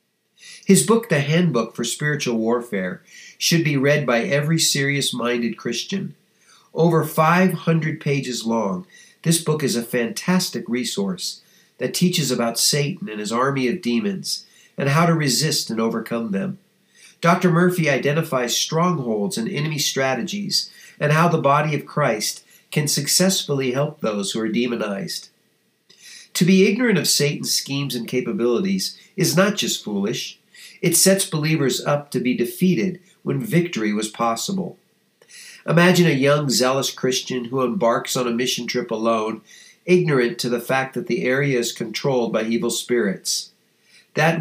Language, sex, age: English, male, 50-69